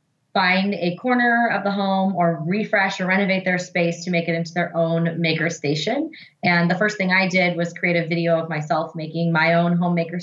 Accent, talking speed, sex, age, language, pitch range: American, 210 wpm, female, 20-39, English, 160-185 Hz